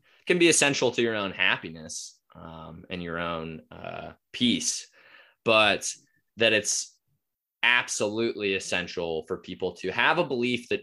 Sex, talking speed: male, 140 wpm